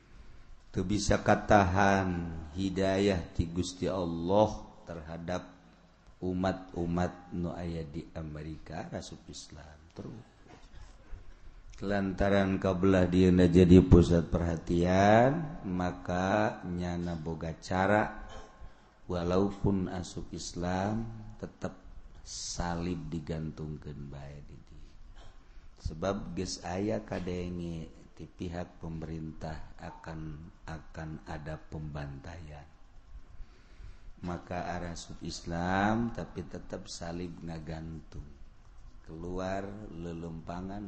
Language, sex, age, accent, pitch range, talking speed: Indonesian, male, 50-69, native, 80-95 Hz, 75 wpm